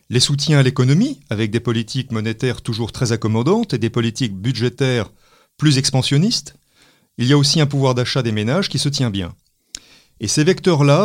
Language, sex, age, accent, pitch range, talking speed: French, male, 40-59, French, 115-145 Hz, 180 wpm